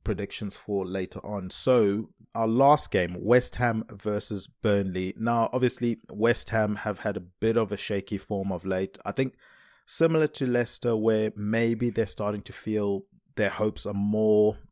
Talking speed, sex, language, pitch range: 165 wpm, male, English, 95-115 Hz